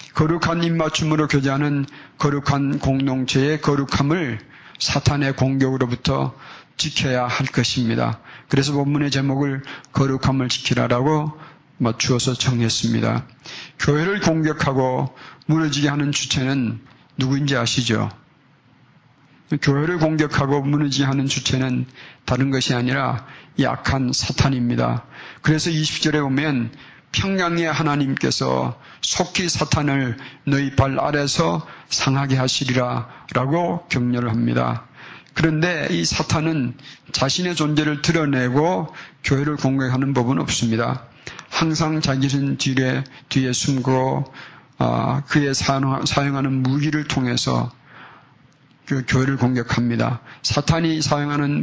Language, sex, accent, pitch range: Korean, male, native, 130-150 Hz